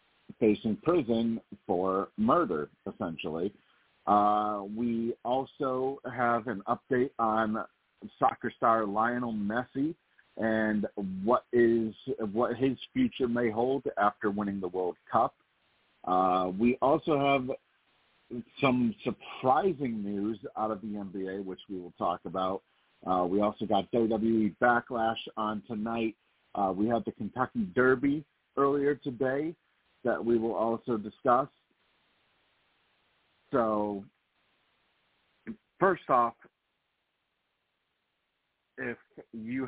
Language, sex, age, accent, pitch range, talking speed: English, male, 50-69, American, 100-120 Hz, 105 wpm